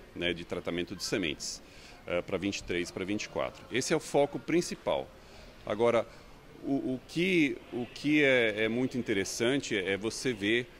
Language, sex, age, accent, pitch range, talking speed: Portuguese, male, 40-59, Brazilian, 105-140 Hz, 155 wpm